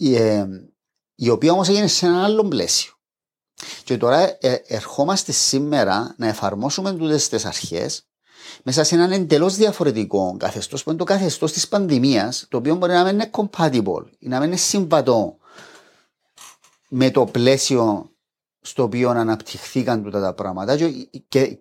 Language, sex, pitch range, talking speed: Greek, male, 110-165 Hz, 140 wpm